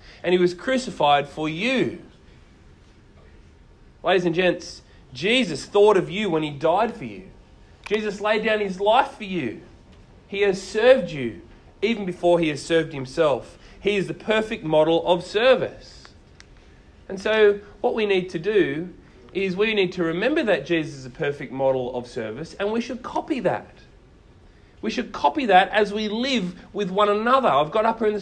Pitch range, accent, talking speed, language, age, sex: 175-215 Hz, Australian, 175 wpm, English, 30-49, male